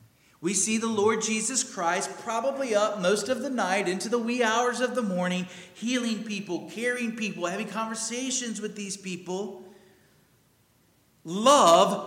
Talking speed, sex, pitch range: 145 wpm, male, 145-220 Hz